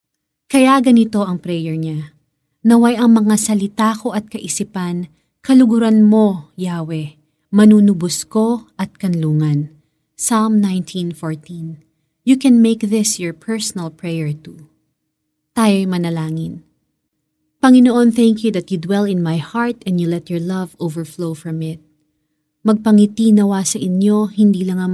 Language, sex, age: Filipino, female, 30-49